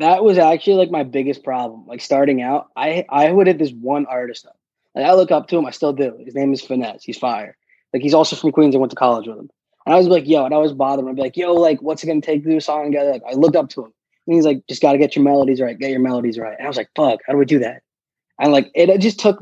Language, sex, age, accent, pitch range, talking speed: English, male, 20-39, American, 130-165 Hz, 320 wpm